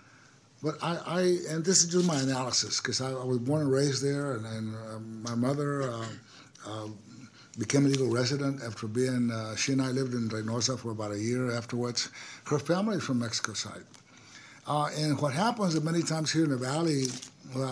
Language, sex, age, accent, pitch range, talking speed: English, male, 60-79, American, 120-145 Hz, 205 wpm